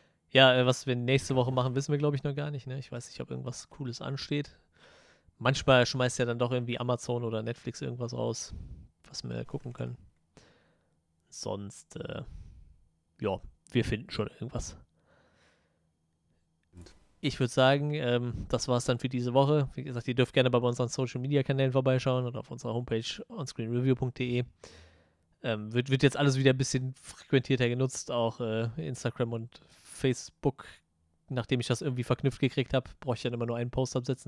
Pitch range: 110-130 Hz